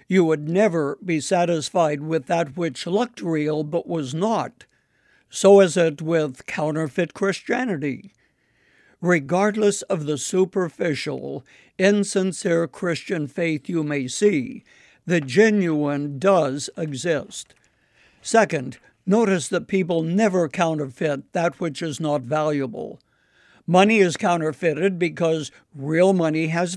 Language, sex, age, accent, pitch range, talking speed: English, male, 60-79, American, 155-195 Hz, 115 wpm